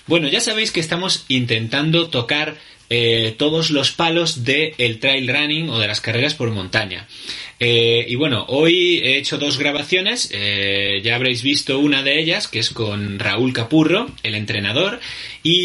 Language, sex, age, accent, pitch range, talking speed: Spanish, male, 20-39, Spanish, 115-155 Hz, 165 wpm